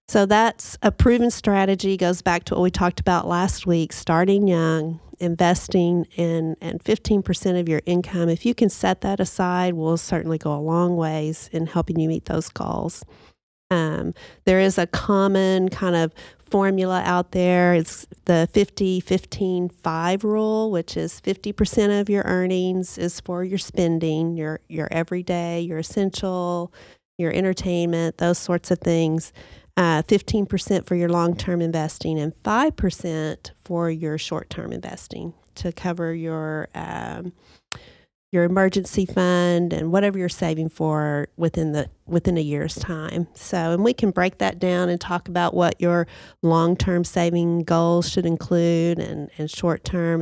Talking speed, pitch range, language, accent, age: 155 wpm, 165-185 Hz, English, American, 40-59